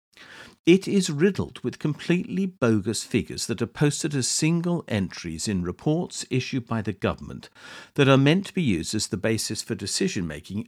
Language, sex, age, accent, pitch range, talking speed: English, male, 50-69, British, 100-150 Hz, 170 wpm